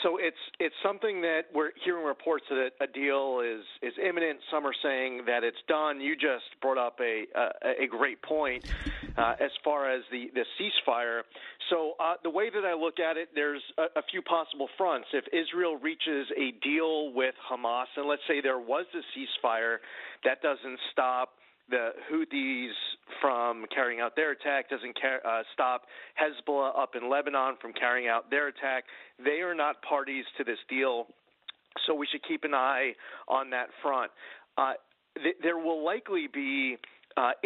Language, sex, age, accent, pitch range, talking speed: English, male, 40-59, American, 130-165 Hz, 180 wpm